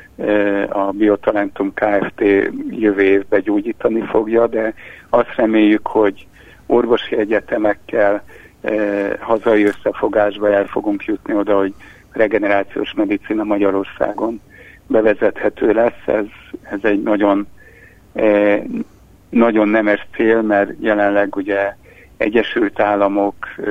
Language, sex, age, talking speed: Hungarian, male, 60-79, 95 wpm